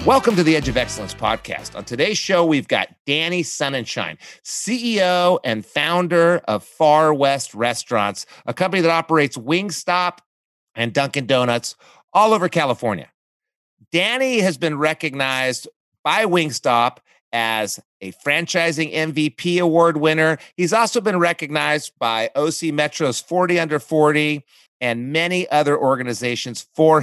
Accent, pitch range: American, 125-170 Hz